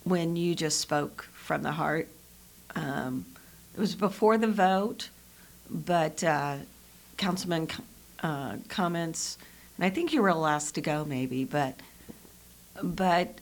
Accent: American